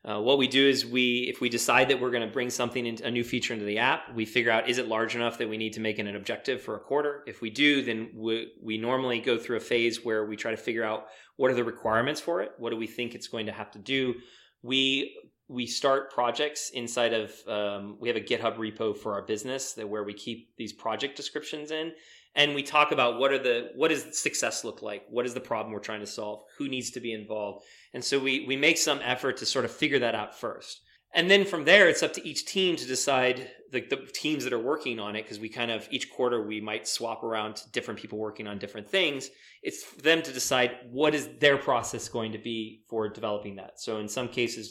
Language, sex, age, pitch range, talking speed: English, male, 30-49, 110-135 Hz, 255 wpm